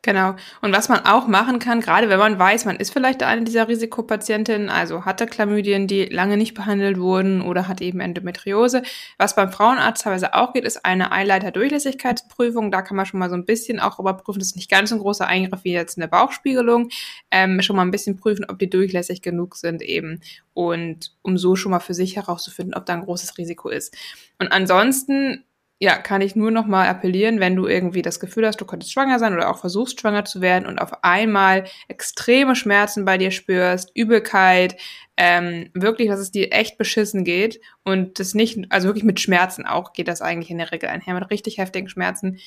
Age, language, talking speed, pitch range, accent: 20-39, German, 210 wpm, 185-220 Hz, German